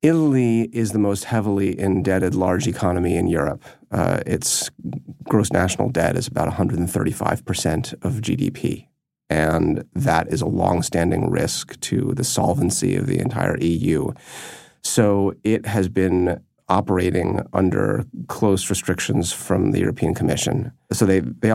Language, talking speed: English, 130 wpm